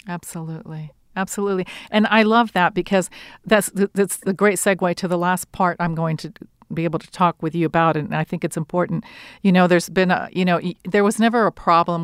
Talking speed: 215 wpm